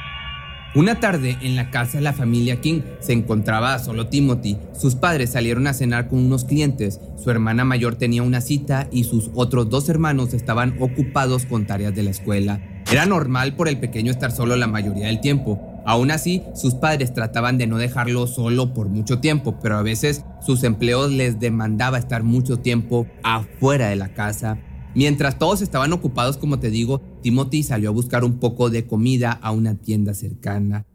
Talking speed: 185 wpm